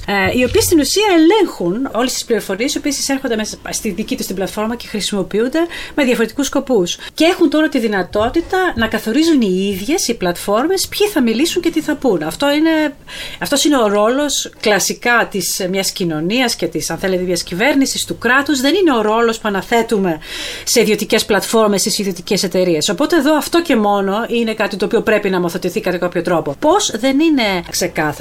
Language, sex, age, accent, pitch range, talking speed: Greek, female, 30-49, native, 195-280 Hz, 170 wpm